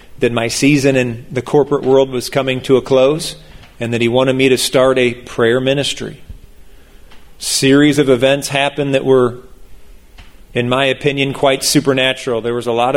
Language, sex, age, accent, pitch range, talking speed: English, male, 40-59, American, 115-155 Hz, 170 wpm